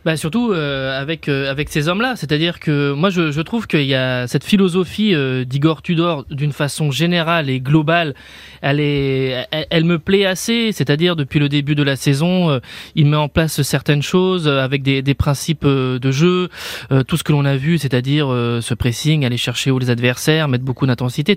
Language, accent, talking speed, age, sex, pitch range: French, French, 210 wpm, 20-39, male, 140-180 Hz